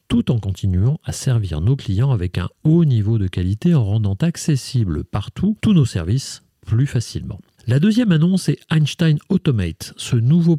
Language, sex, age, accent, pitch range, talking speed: French, male, 40-59, French, 105-155 Hz, 170 wpm